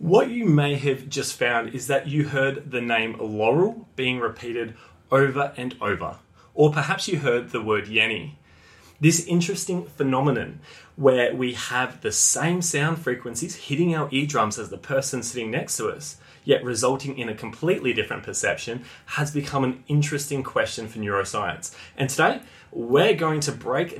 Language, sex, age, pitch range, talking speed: English, male, 20-39, 110-145 Hz, 165 wpm